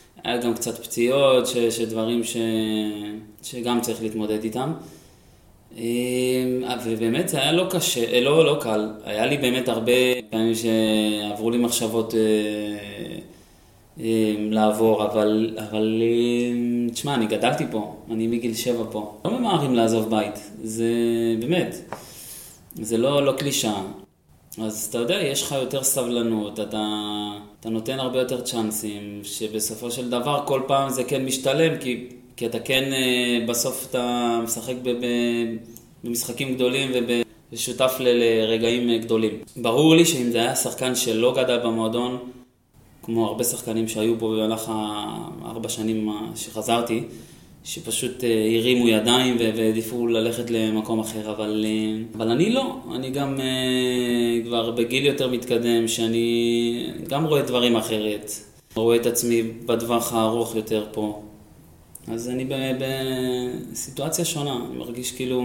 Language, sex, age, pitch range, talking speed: Hebrew, male, 20-39, 110-125 Hz, 125 wpm